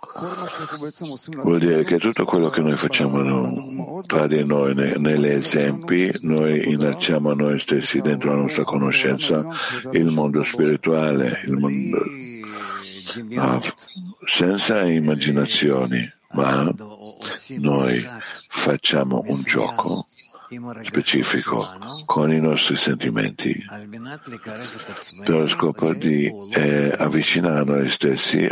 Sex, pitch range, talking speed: male, 75-95 Hz, 100 wpm